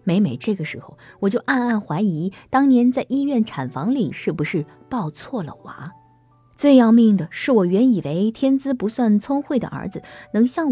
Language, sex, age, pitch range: Chinese, female, 20-39, 160-235 Hz